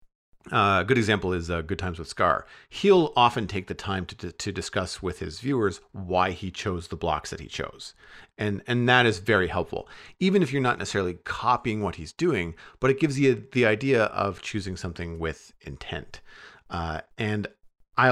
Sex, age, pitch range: male, 40-59, 90-115 Hz